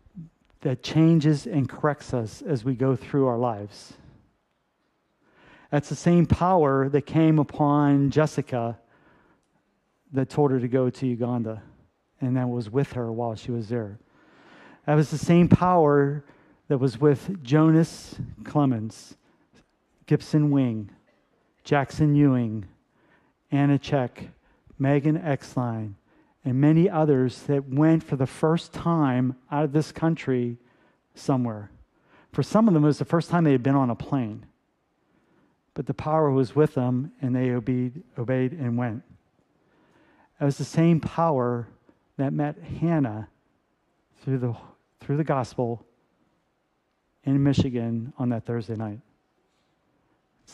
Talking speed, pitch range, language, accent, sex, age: 135 wpm, 125-150 Hz, English, American, male, 40-59